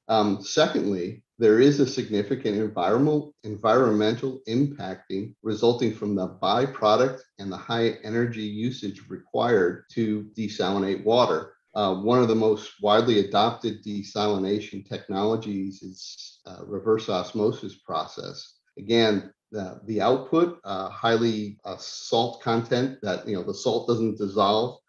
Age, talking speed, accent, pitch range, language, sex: 50-69, 125 wpm, American, 100-115 Hz, English, male